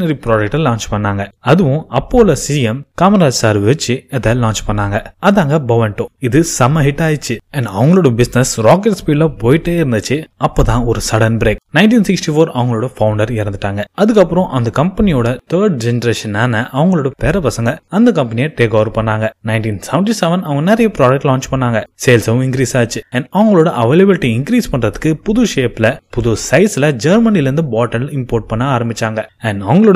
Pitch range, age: 115-160 Hz, 20-39